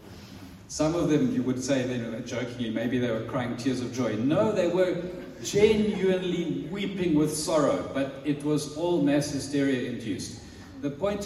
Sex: male